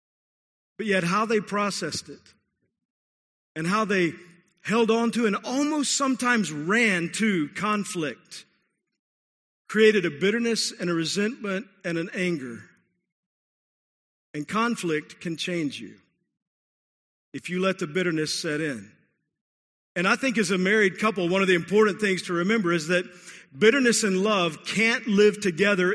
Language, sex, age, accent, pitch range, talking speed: English, male, 50-69, American, 180-230 Hz, 140 wpm